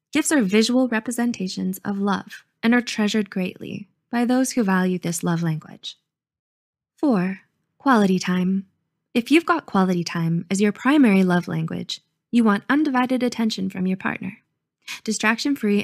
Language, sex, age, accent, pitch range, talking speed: English, female, 20-39, American, 190-245 Hz, 145 wpm